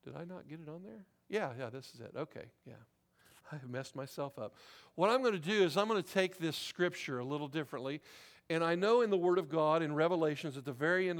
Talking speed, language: 255 wpm, English